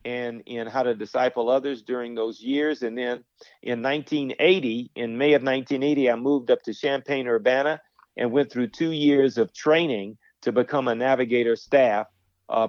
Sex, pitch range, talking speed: male, 115-140 Hz, 165 wpm